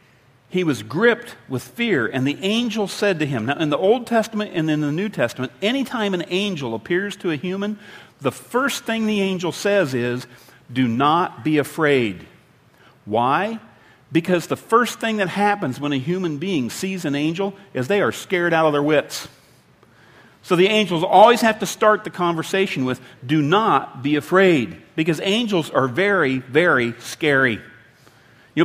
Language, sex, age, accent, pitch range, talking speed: English, male, 50-69, American, 135-205 Hz, 175 wpm